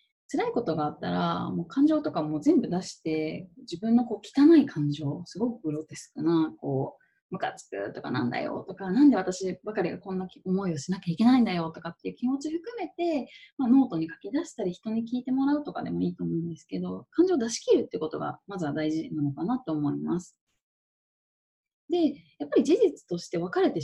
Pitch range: 165-275 Hz